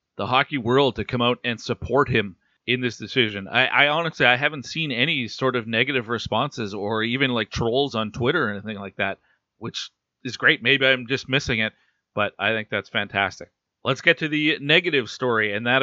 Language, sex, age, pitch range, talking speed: English, male, 40-59, 110-130 Hz, 205 wpm